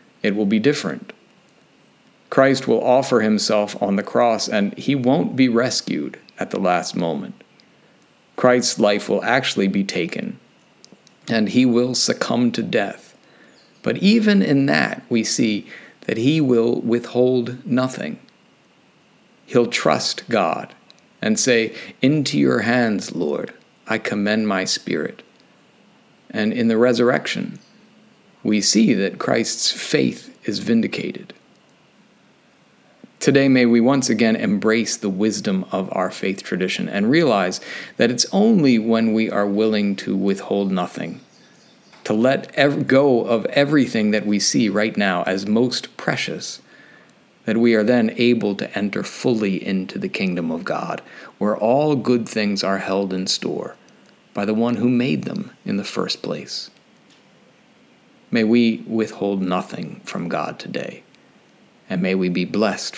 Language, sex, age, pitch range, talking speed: English, male, 50-69, 105-135 Hz, 140 wpm